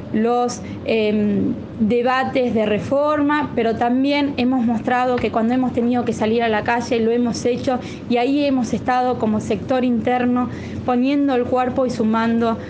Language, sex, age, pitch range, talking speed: Spanish, female, 20-39, 225-270 Hz, 155 wpm